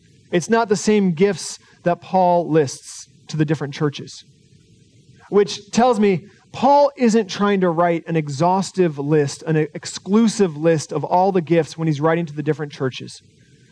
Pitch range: 150-205 Hz